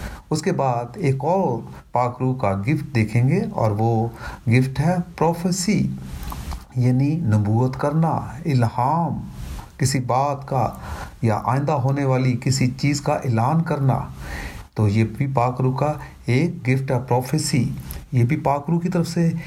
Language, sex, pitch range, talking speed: Urdu, male, 110-150 Hz, 140 wpm